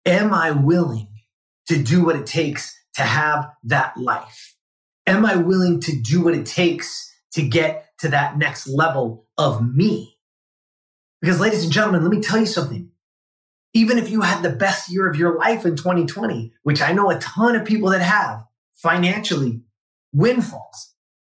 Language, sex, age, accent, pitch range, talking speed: English, male, 30-49, American, 145-190 Hz, 170 wpm